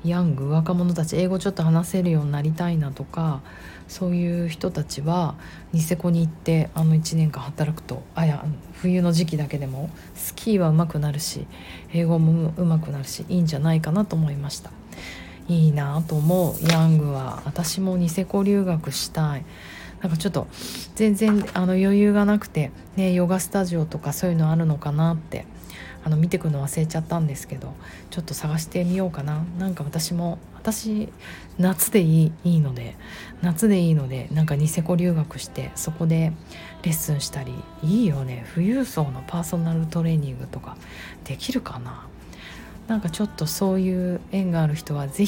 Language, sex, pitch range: Japanese, female, 150-175 Hz